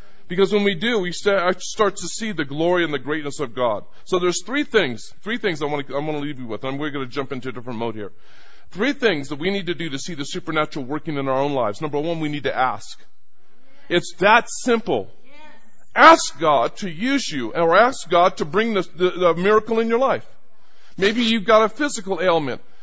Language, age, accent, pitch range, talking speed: English, 40-59, American, 180-255 Hz, 225 wpm